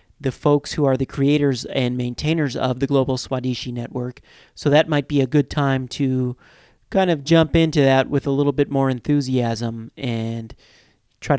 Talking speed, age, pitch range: 180 wpm, 40-59, 125-145 Hz